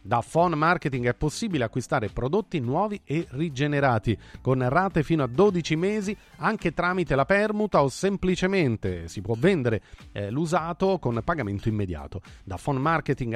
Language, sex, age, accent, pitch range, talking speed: Italian, male, 40-59, native, 130-190 Hz, 150 wpm